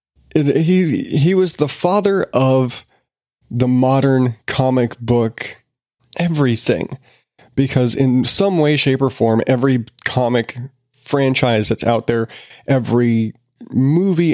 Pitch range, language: 115-135 Hz, English